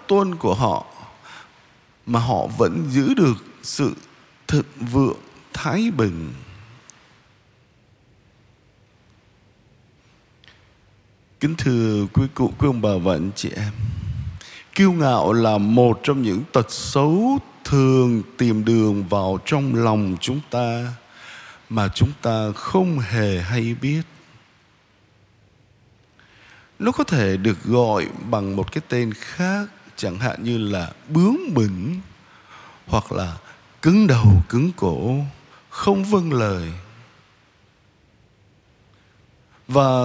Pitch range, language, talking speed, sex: 110-150 Hz, Vietnamese, 105 wpm, male